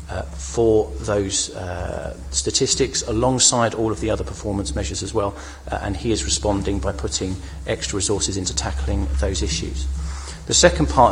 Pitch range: 95-110 Hz